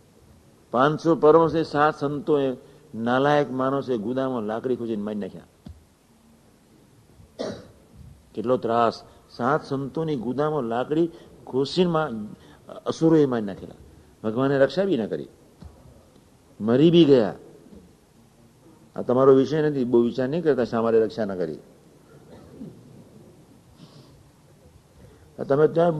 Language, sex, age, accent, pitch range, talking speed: Gujarati, male, 60-79, native, 125-165 Hz, 105 wpm